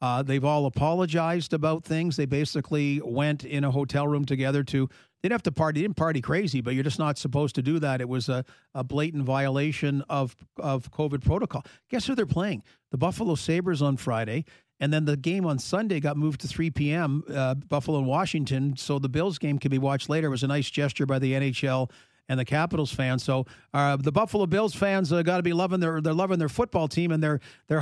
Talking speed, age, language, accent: 230 wpm, 50-69, English, American